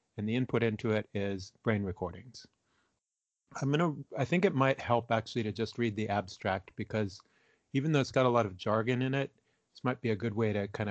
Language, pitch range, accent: English, 110-135 Hz, American